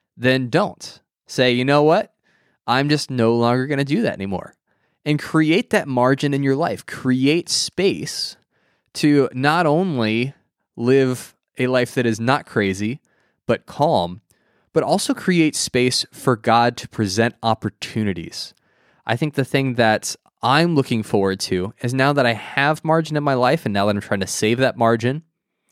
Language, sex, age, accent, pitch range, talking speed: English, male, 20-39, American, 115-145 Hz, 165 wpm